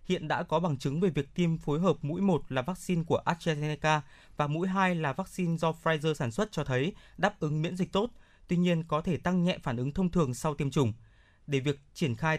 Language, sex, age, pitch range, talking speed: Vietnamese, male, 20-39, 150-185 Hz, 235 wpm